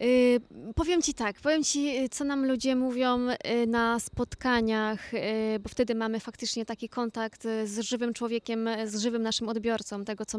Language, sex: Polish, female